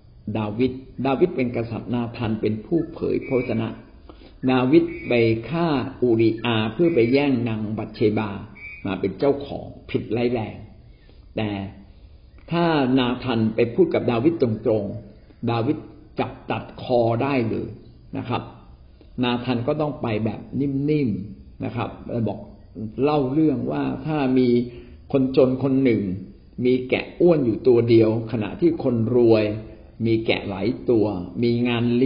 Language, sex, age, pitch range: Thai, male, 60-79, 105-130 Hz